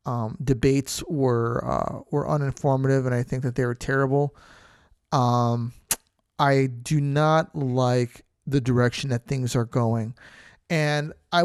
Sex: male